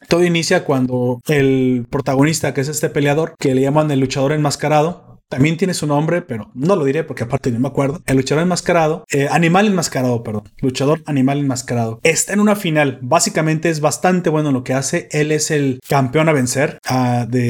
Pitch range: 140-175 Hz